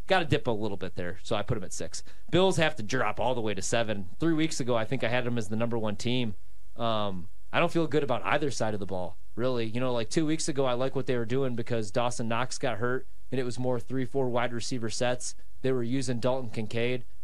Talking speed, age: 270 wpm, 30-49